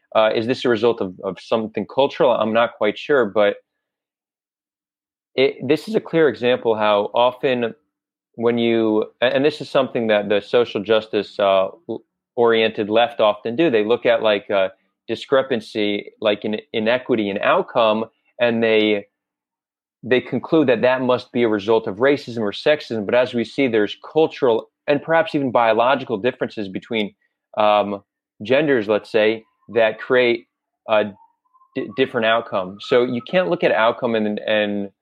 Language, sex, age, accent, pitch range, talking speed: English, male, 30-49, American, 105-125 Hz, 160 wpm